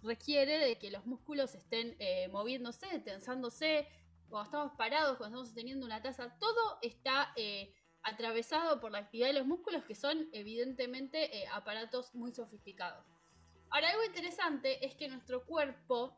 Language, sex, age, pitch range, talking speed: Spanish, female, 20-39, 205-280 Hz, 150 wpm